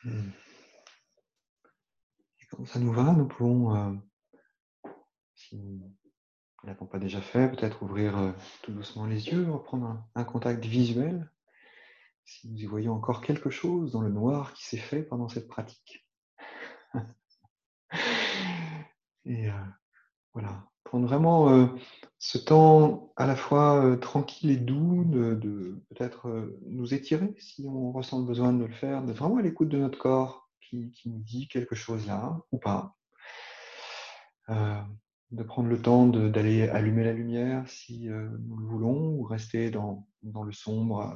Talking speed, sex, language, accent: 155 wpm, male, French, French